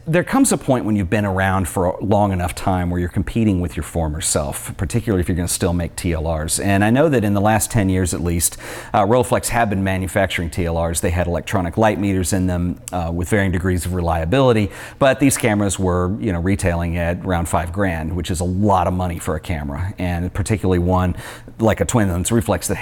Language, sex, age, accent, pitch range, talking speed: English, male, 40-59, American, 90-110 Hz, 230 wpm